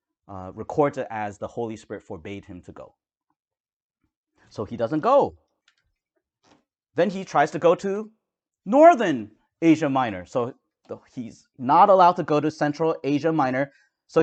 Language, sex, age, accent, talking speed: English, male, 30-49, American, 150 wpm